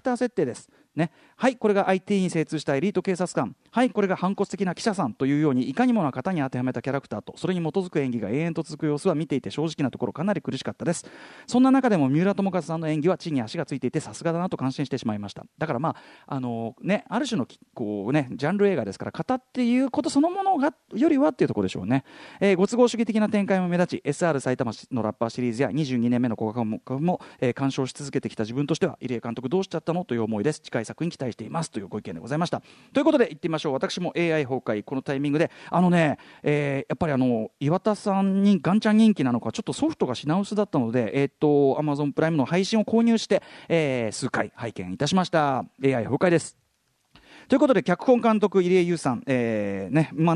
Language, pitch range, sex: Japanese, 135-200 Hz, male